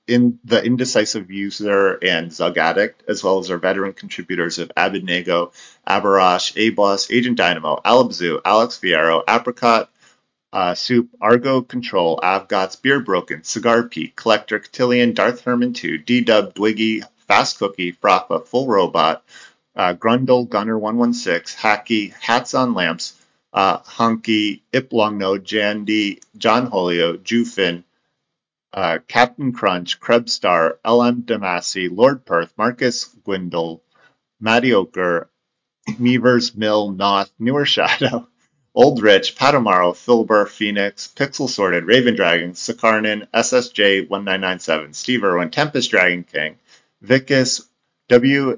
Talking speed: 115 wpm